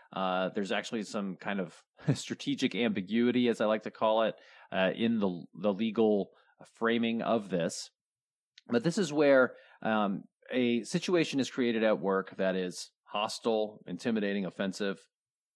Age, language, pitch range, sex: 30-49, English, 100-140 Hz, male